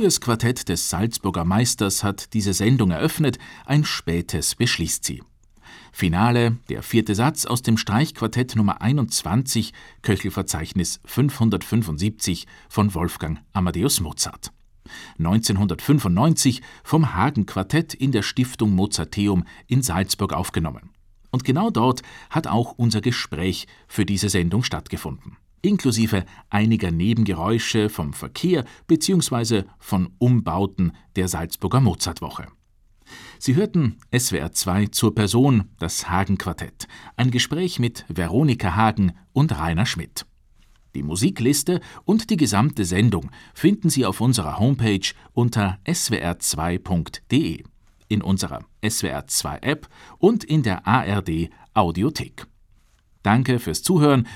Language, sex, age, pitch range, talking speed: German, male, 50-69, 95-125 Hz, 110 wpm